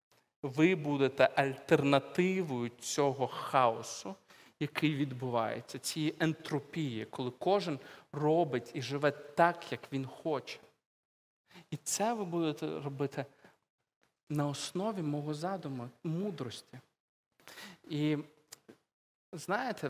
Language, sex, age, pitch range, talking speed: Ukrainian, male, 40-59, 145-195 Hz, 90 wpm